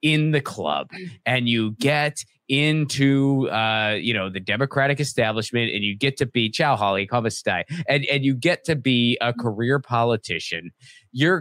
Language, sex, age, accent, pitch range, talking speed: English, male, 30-49, American, 110-150 Hz, 165 wpm